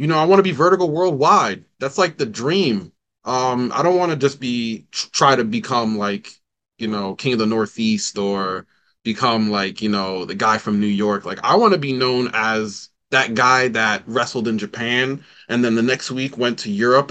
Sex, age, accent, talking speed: male, 20-39, American, 210 wpm